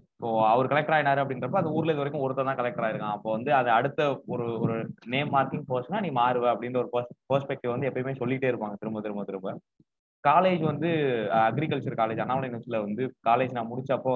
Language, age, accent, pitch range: Tamil, 20-39, native, 115-140 Hz